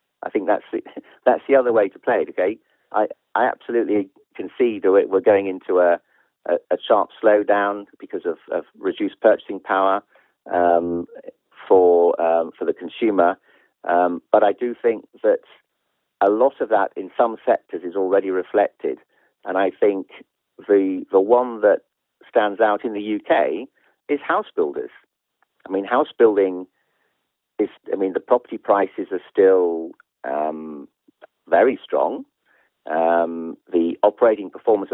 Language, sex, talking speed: English, male, 150 wpm